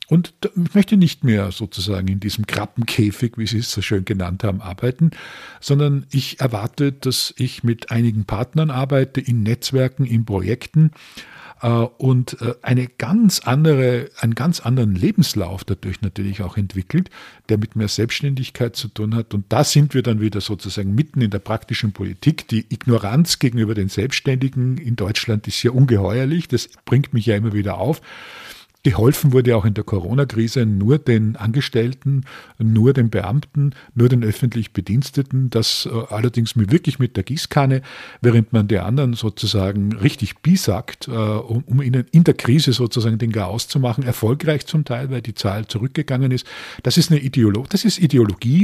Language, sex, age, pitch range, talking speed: German, male, 50-69, 110-140 Hz, 165 wpm